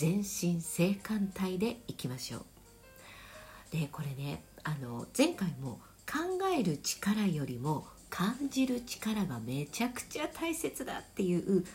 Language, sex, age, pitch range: Japanese, female, 50-69, 135-225 Hz